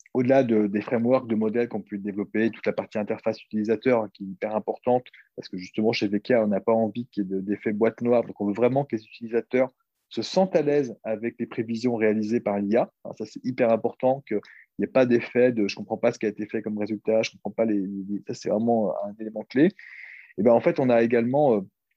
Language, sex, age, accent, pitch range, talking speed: French, male, 20-39, French, 105-130 Hz, 255 wpm